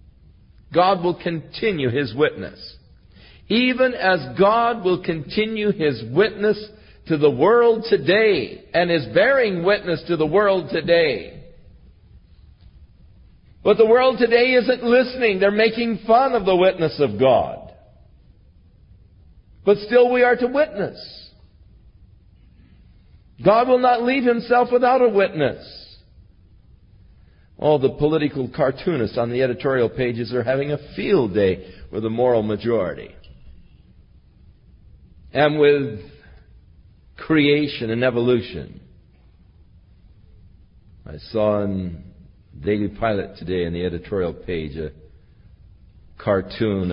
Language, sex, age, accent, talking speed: English, male, 50-69, American, 110 wpm